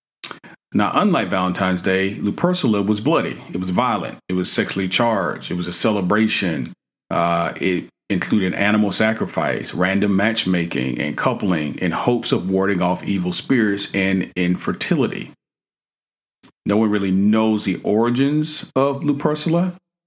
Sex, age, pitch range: male, 40-59, 90-110 Hz